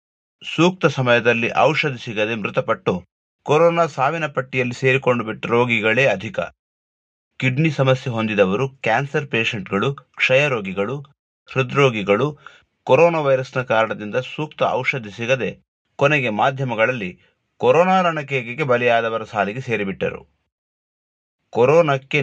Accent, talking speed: native, 85 wpm